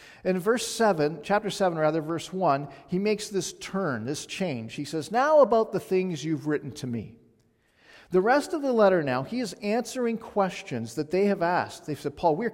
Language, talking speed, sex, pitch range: English, 200 wpm, male, 165-215 Hz